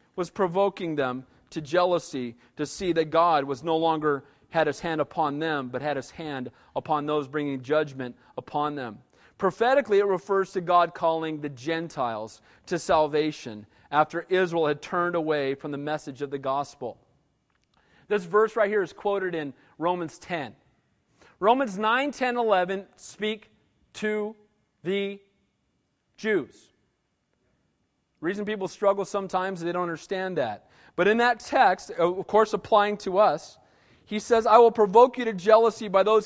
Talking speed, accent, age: 155 wpm, American, 40-59